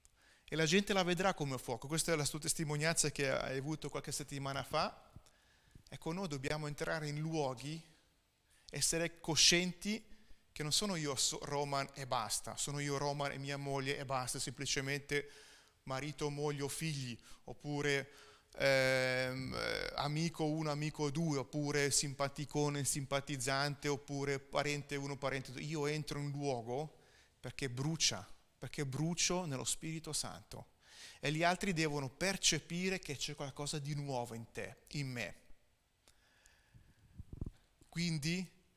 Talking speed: 135 wpm